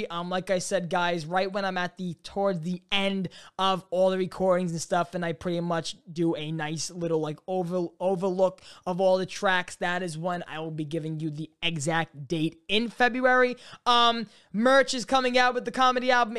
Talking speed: 205 wpm